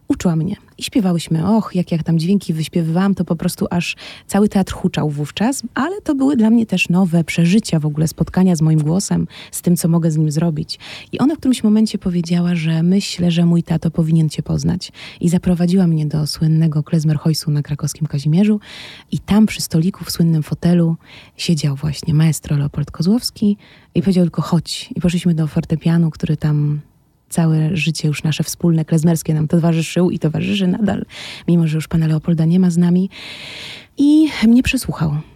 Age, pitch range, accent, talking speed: 20-39, 160-190 Hz, native, 180 wpm